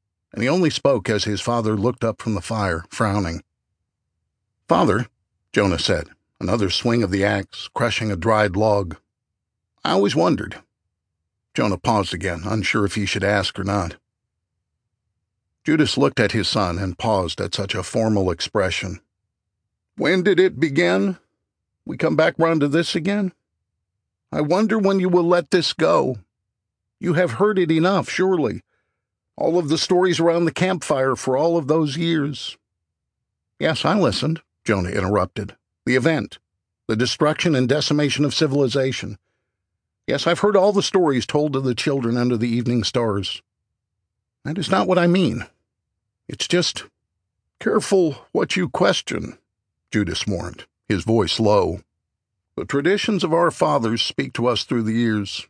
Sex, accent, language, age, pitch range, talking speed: male, American, English, 50-69, 100-150 Hz, 155 wpm